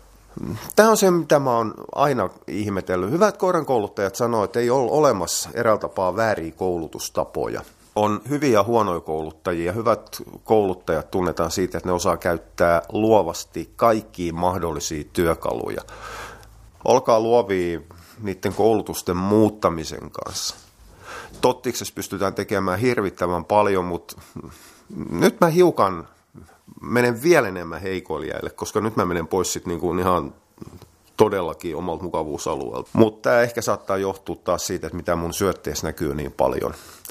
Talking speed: 125 wpm